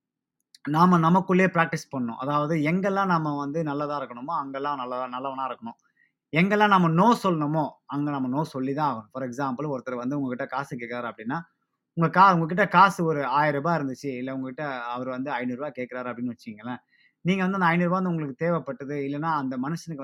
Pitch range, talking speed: 130-160 Hz, 165 wpm